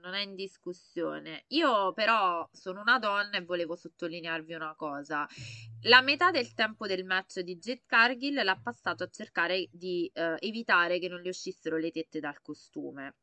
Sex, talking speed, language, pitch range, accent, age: female, 170 wpm, Italian, 165-195 Hz, native, 20-39